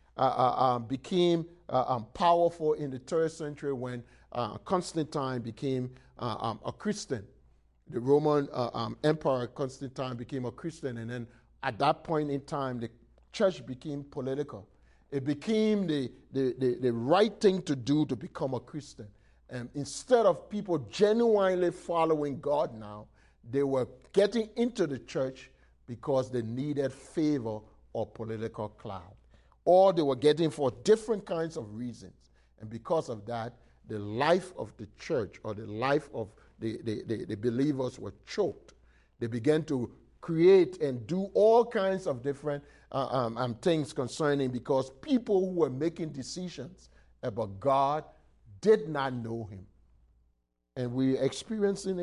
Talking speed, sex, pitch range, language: 150 wpm, male, 120-165 Hz, English